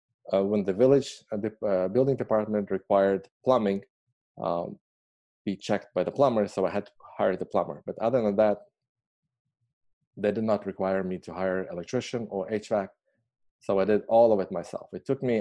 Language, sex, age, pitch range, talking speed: English, male, 20-39, 100-120 Hz, 190 wpm